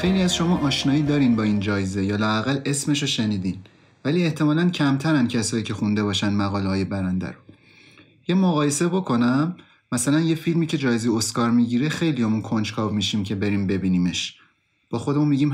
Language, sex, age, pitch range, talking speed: Persian, male, 30-49, 110-145 Hz, 160 wpm